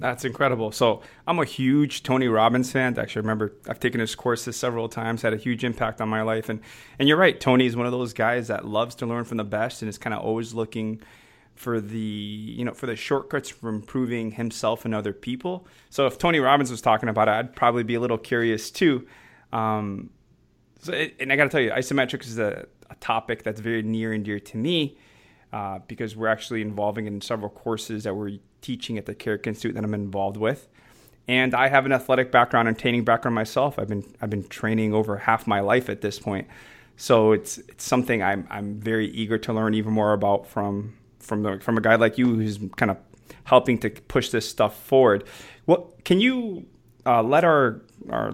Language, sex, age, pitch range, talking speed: English, male, 30-49, 110-125 Hz, 215 wpm